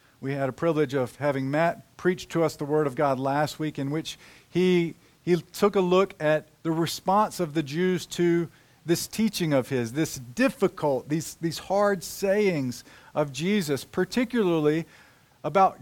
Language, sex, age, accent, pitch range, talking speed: English, male, 50-69, American, 140-185 Hz, 165 wpm